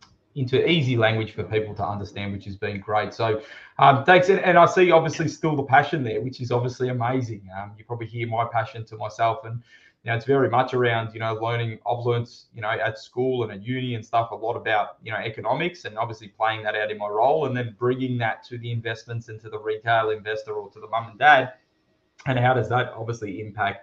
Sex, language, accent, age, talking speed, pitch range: male, English, Australian, 20-39, 230 wpm, 110-135 Hz